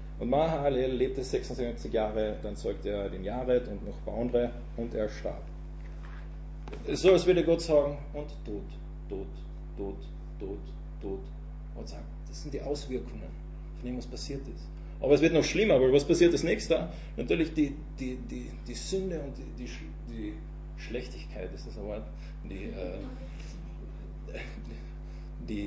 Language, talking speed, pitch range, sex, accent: German, 150 wpm, 125-155 Hz, male, German